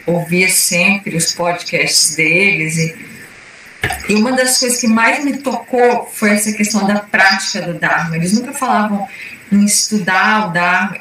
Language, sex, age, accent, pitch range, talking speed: Portuguese, female, 20-39, Brazilian, 180-215 Hz, 155 wpm